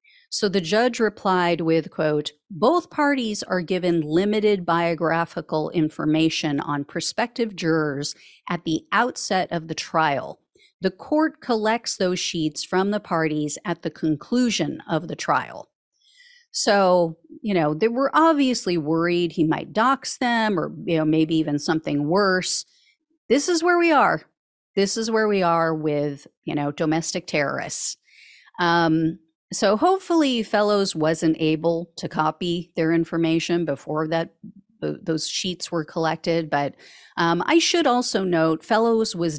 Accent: American